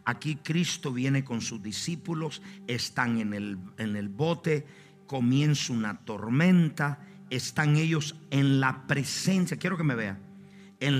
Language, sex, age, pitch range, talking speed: Spanish, male, 50-69, 125-170 Hz, 130 wpm